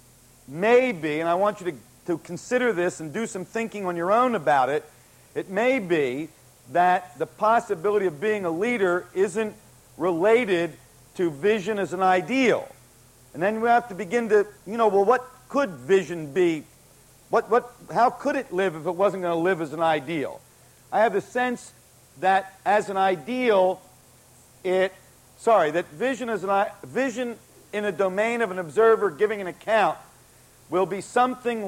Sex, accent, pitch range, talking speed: male, American, 165-215 Hz, 175 wpm